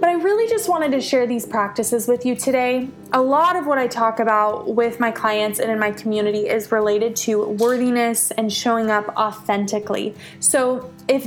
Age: 20-39